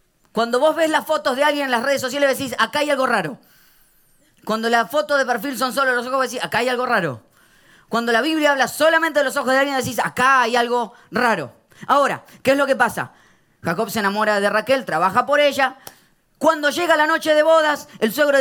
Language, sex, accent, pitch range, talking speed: Spanish, female, Argentinian, 200-265 Hz, 220 wpm